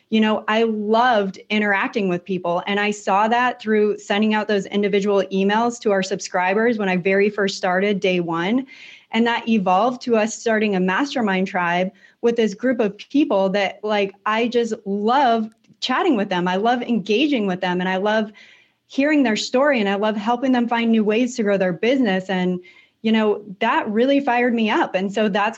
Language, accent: English, American